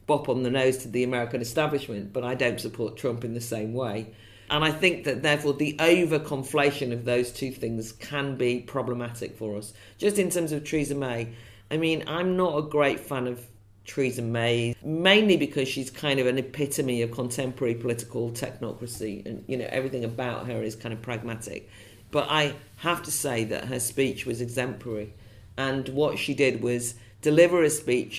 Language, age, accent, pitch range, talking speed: English, 50-69, British, 115-140 Hz, 185 wpm